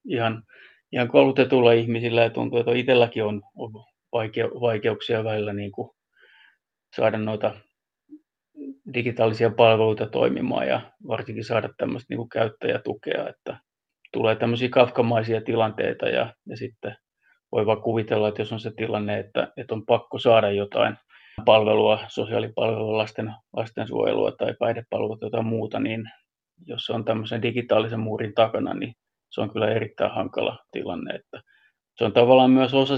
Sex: male